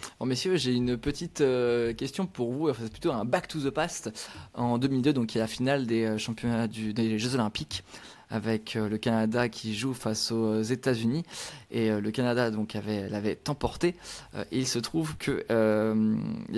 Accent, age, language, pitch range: French, 20-39, French, 110-140 Hz